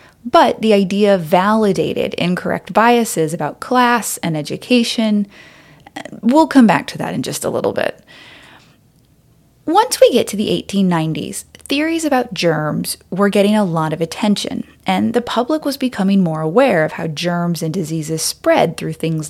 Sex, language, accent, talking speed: female, English, American, 155 wpm